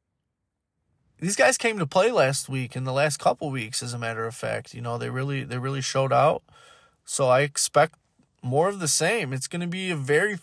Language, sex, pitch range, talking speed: English, male, 135-185 Hz, 220 wpm